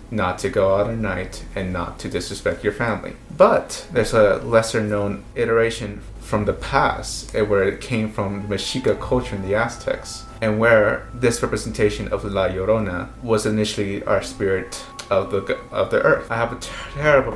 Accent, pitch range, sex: American, 100-110 Hz, male